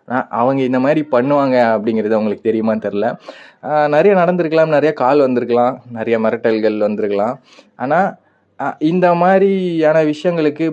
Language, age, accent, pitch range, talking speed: Tamil, 20-39, native, 110-140 Hz, 115 wpm